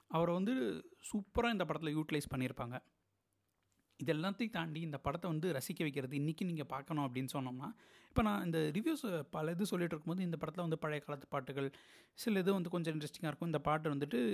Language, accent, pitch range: Tamil, native, 135-175 Hz